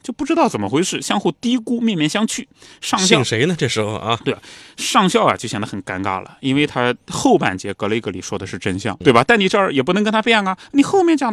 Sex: male